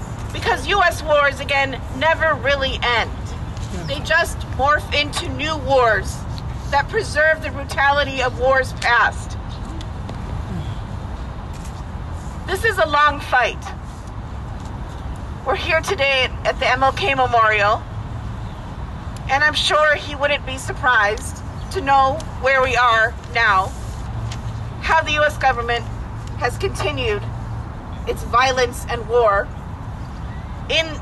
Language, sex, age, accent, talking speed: English, female, 40-59, American, 110 wpm